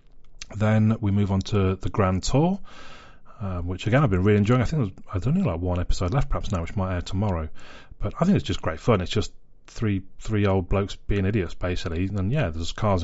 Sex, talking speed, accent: male, 225 wpm, British